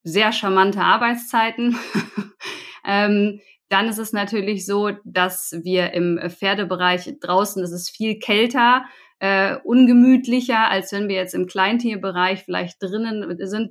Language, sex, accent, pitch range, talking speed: German, female, German, 190-235 Hz, 125 wpm